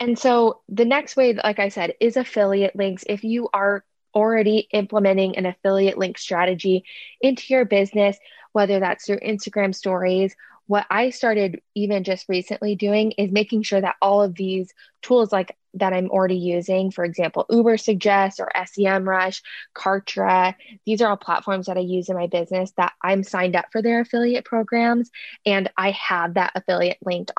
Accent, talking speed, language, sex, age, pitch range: American, 175 wpm, English, female, 20-39, 185-210 Hz